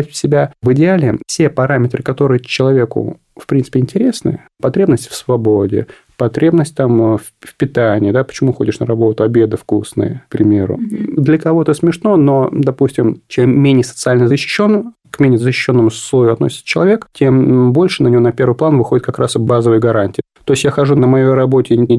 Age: 30-49